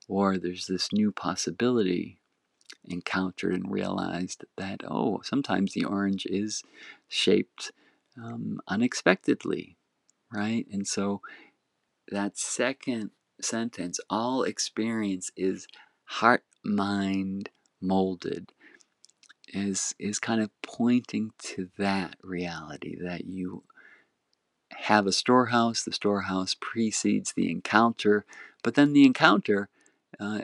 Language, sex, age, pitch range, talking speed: English, male, 50-69, 95-105 Hz, 100 wpm